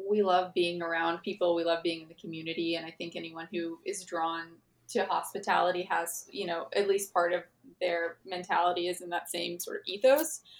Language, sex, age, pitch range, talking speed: English, female, 20-39, 175-205 Hz, 205 wpm